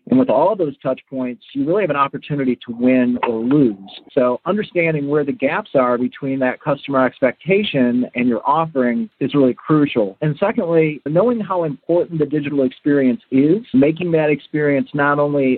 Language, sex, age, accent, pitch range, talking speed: English, male, 40-59, American, 125-160 Hz, 175 wpm